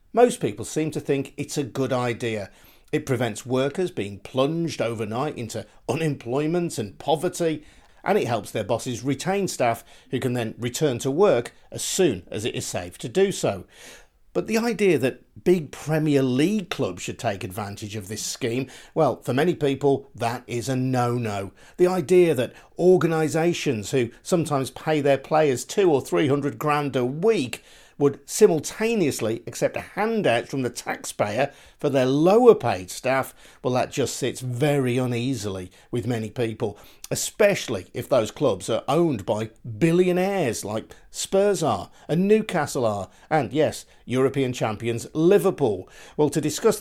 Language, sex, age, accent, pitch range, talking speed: English, male, 50-69, British, 120-160 Hz, 155 wpm